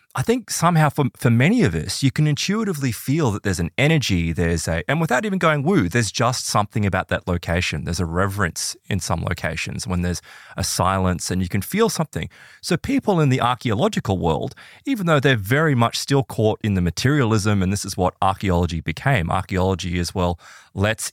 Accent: Australian